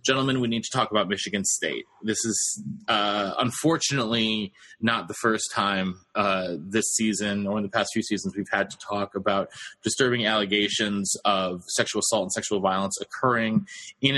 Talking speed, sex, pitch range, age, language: 170 wpm, male, 105-120 Hz, 20-39, English